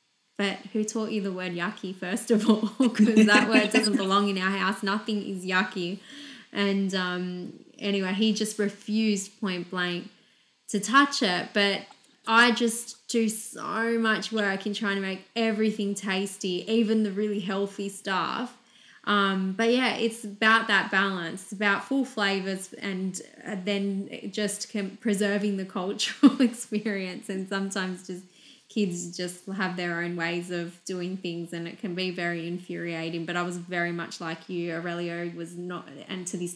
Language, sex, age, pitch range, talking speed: English, female, 20-39, 180-215 Hz, 160 wpm